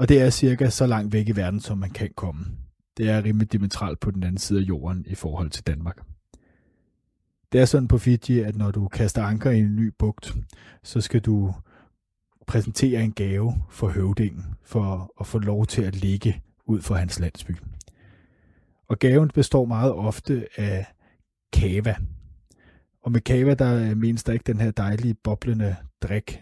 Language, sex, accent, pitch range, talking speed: Danish, male, native, 100-120 Hz, 175 wpm